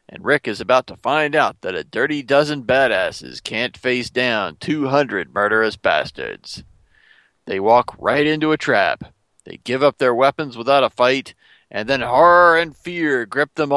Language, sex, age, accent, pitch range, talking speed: English, male, 40-59, American, 120-170 Hz, 170 wpm